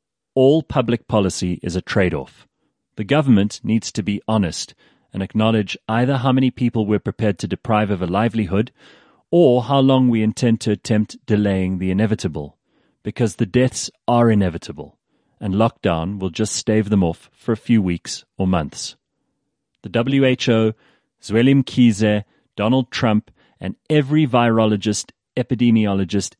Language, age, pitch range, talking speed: English, 30-49, 95-120 Hz, 145 wpm